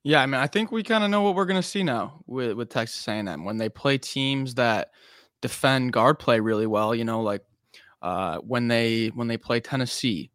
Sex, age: male, 20-39